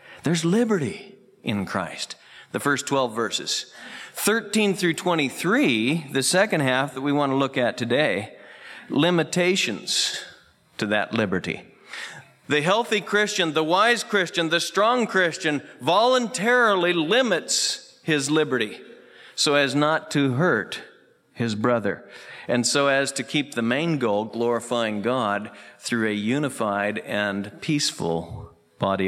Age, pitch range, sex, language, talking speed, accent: 50-69, 120-185 Hz, male, English, 125 wpm, American